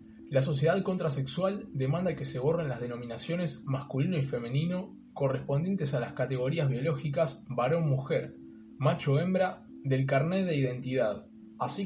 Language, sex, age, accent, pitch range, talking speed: Spanish, male, 20-39, Argentinian, 130-165 Hz, 120 wpm